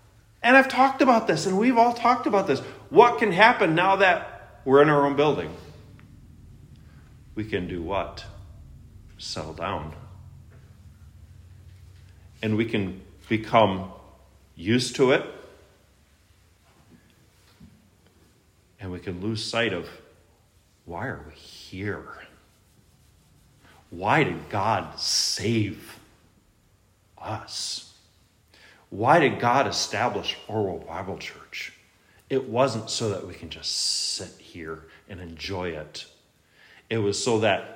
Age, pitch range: 40-59, 90-115 Hz